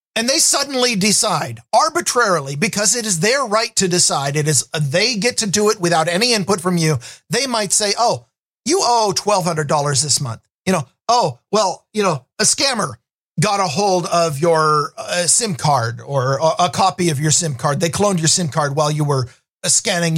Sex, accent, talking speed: male, American, 200 wpm